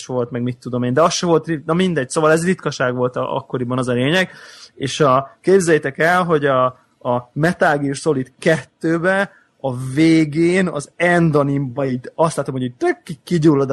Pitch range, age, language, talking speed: 130-150 Hz, 20-39, Hungarian, 185 wpm